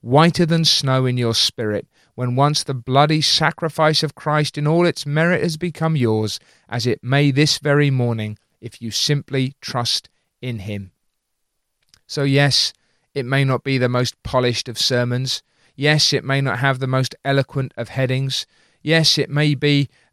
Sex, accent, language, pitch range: male, British, English, 125-155 Hz